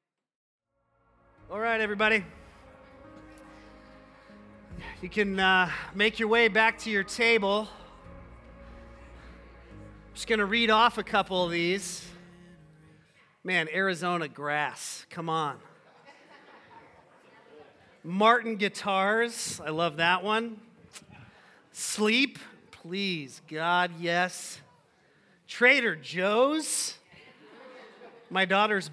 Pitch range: 180-235 Hz